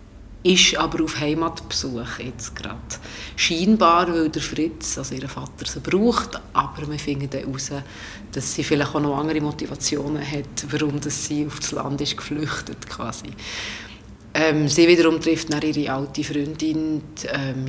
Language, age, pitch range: German, 30-49, 110-155 Hz